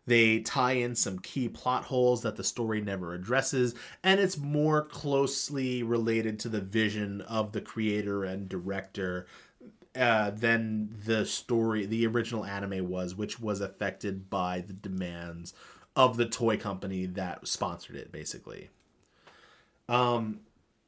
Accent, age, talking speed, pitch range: American, 30-49, 140 wpm, 105-130 Hz